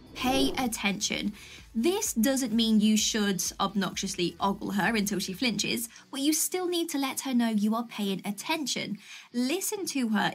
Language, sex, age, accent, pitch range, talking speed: English, female, 20-39, British, 215-315 Hz, 160 wpm